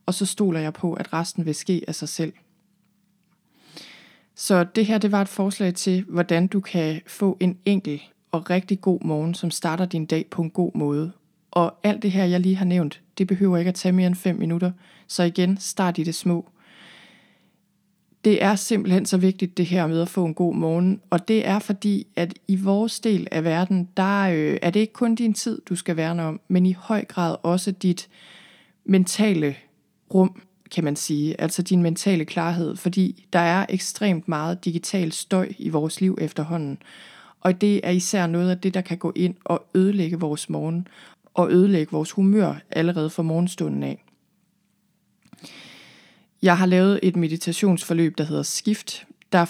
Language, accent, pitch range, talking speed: Danish, native, 170-195 Hz, 190 wpm